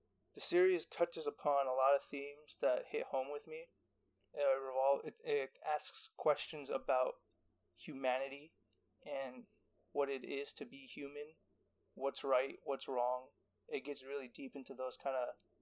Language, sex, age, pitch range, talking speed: English, male, 20-39, 125-140 Hz, 155 wpm